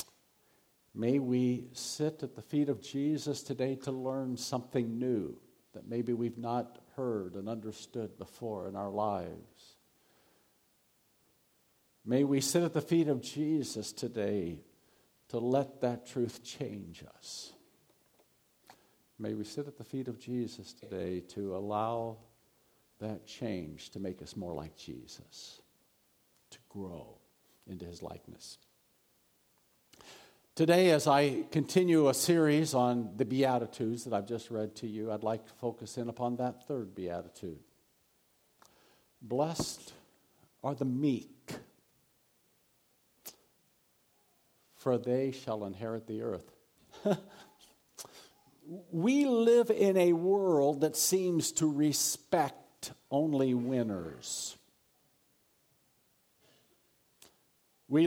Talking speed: 115 wpm